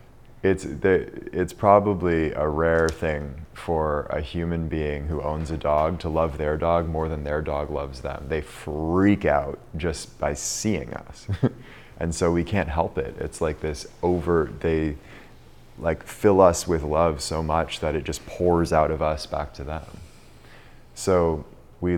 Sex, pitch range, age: male, 80-95 Hz, 30-49